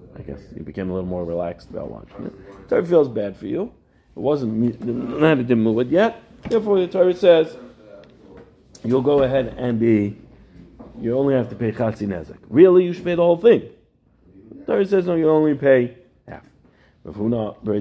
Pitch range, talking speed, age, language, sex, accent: 120-155 Hz, 185 wpm, 40-59, English, male, American